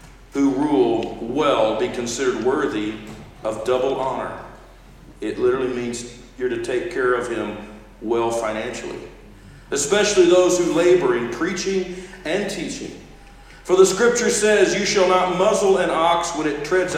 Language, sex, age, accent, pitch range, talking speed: English, male, 50-69, American, 125-180 Hz, 145 wpm